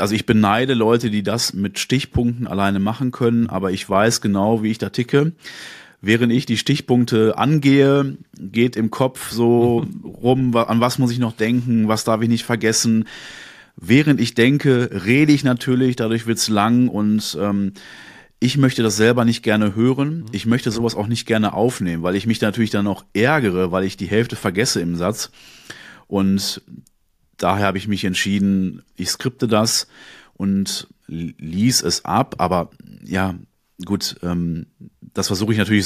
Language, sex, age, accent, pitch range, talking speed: German, male, 30-49, German, 95-120 Hz, 165 wpm